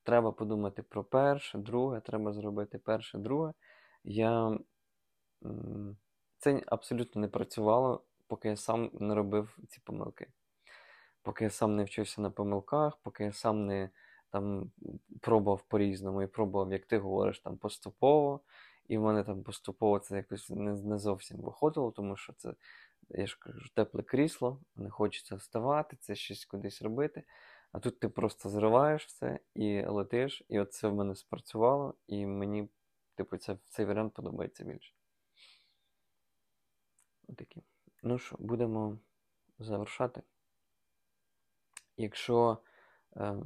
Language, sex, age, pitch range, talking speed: Ukrainian, male, 20-39, 100-120 Hz, 135 wpm